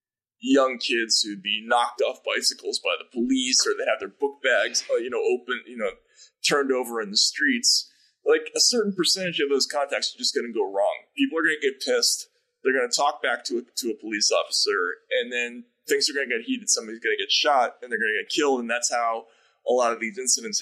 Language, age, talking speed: English, 20-39, 240 wpm